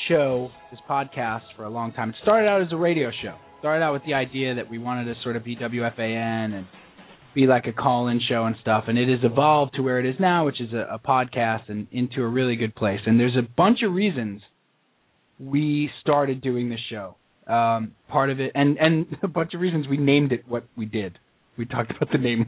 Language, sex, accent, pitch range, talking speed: English, male, American, 120-165 Hz, 240 wpm